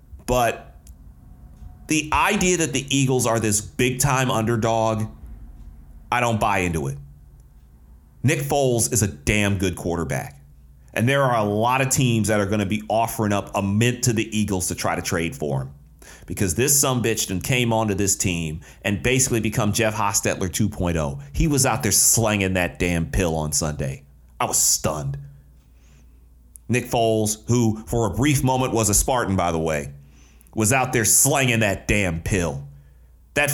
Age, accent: 30-49, American